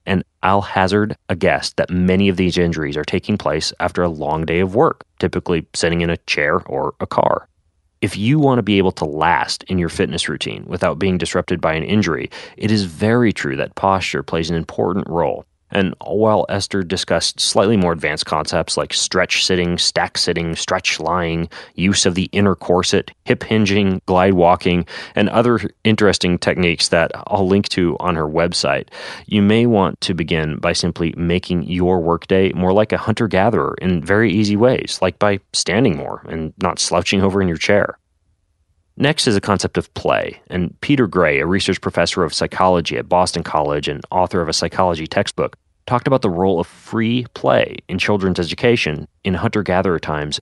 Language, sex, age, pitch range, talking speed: English, male, 30-49, 85-100 Hz, 185 wpm